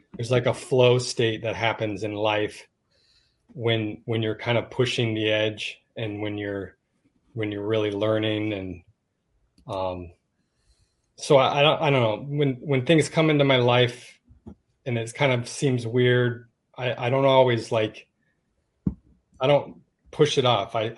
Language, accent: English, American